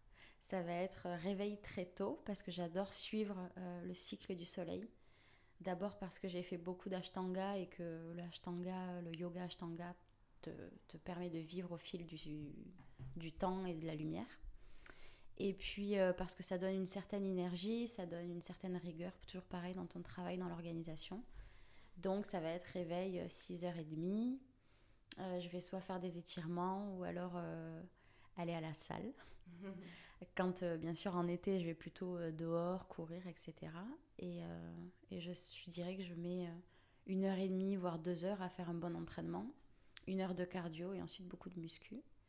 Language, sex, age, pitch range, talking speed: French, female, 20-39, 170-190 Hz, 180 wpm